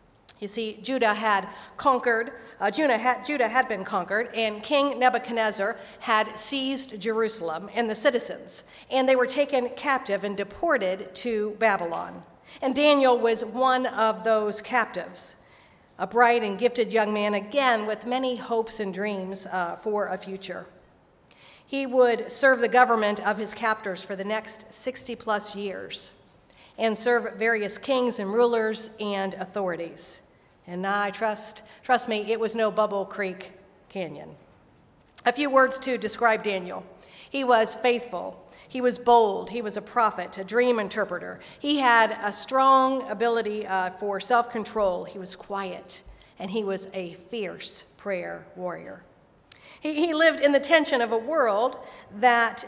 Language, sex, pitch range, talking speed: English, female, 205-245 Hz, 150 wpm